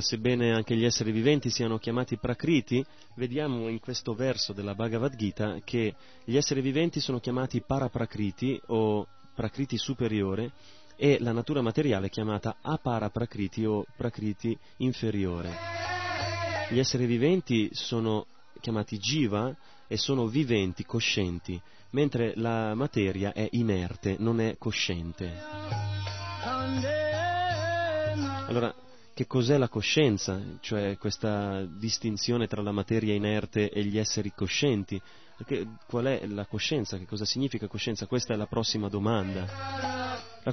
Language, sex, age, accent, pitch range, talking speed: Italian, male, 30-49, native, 105-130 Hz, 125 wpm